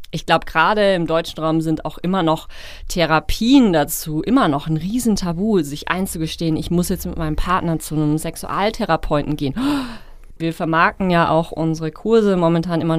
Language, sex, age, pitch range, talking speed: German, female, 30-49, 155-185 Hz, 165 wpm